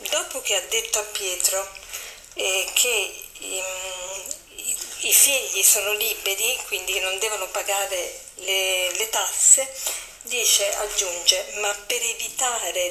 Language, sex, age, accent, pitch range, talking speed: Italian, female, 40-59, native, 205-325 Hz, 110 wpm